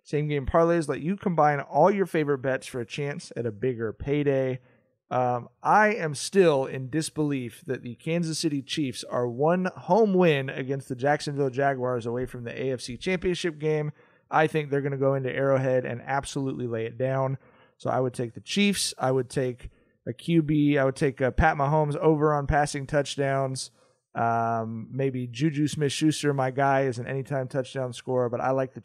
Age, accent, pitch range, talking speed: 30-49, American, 130-155 Hz, 190 wpm